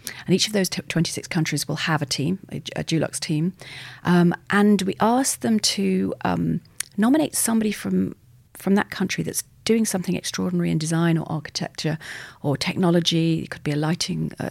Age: 40-59